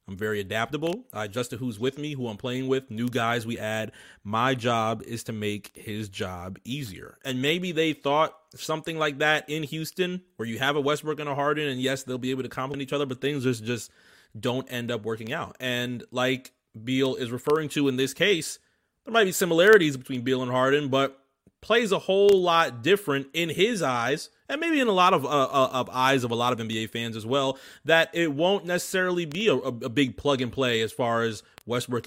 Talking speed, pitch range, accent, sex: 225 wpm, 120-155 Hz, American, male